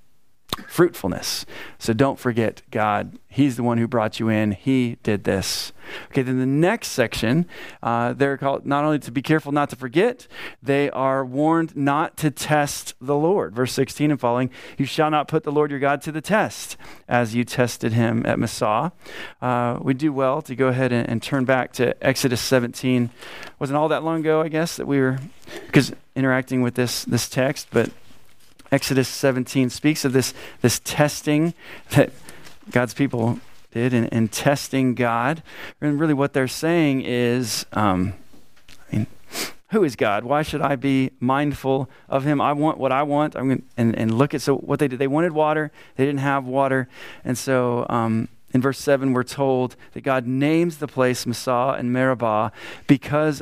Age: 30-49